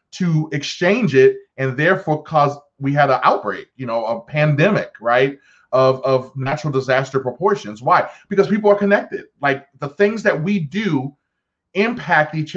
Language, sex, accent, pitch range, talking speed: English, male, American, 135-175 Hz, 160 wpm